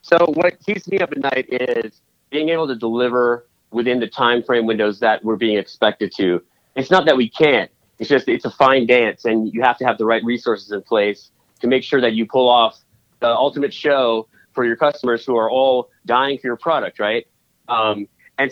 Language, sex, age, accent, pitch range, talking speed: English, male, 30-49, American, 115-145 Hz, 210 wpm